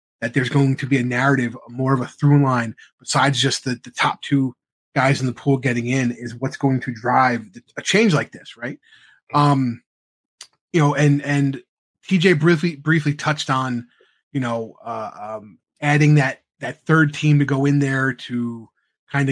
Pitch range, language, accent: 130-150 Hz, English, American